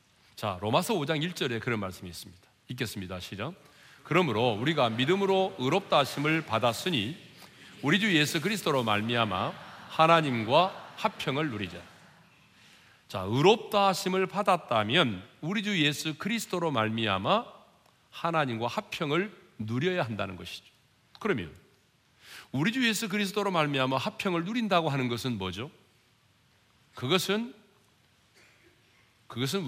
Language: Korean